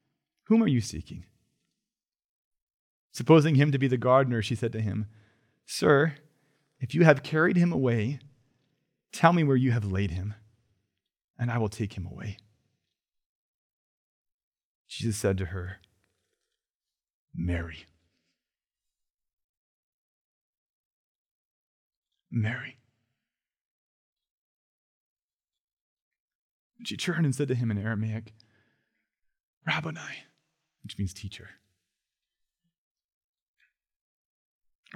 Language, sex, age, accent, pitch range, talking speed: English, male, 30-49, American, 115-165 Hz, 90 wpm